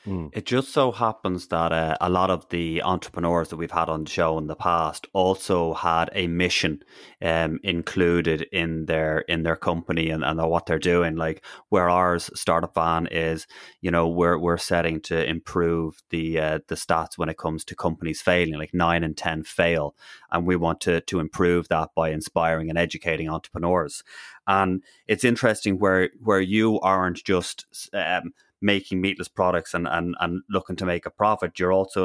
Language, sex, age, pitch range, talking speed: English, male, 30-49, 85-95 Hz, 185 wpm